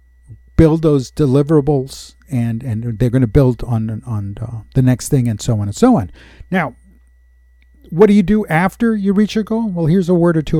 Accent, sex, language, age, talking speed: American, male, English, 50-69, 210 wpm